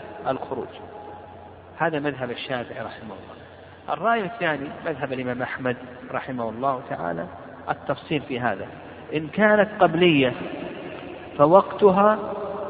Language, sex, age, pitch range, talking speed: Arabic, male, 50-69, 130-190 Hz, 100 wpm